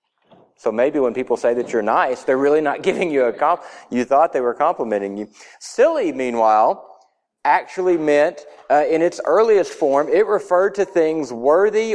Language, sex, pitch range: English, male, 125-150 Hz